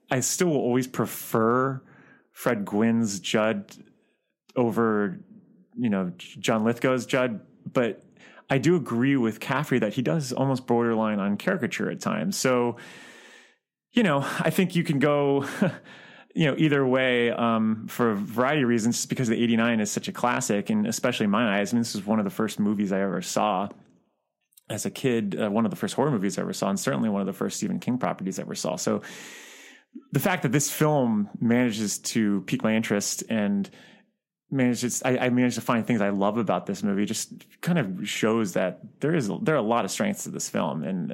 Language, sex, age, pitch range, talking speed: English, male, 30-49, 110-165 Hz, 200 wpm